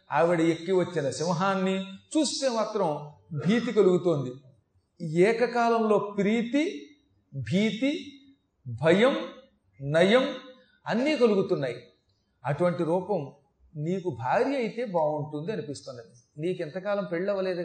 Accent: native